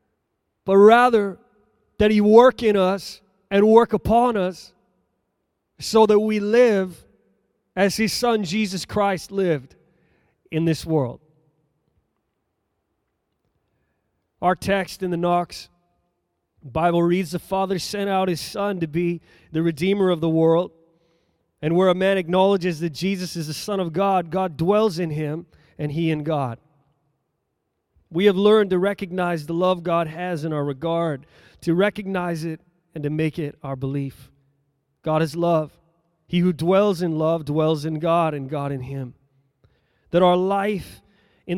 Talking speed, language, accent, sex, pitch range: 150 wpm, English, American, male, 155-195 Hz